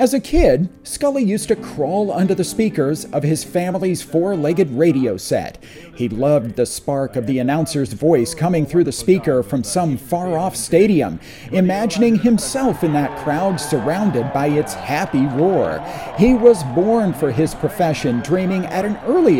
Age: 40-59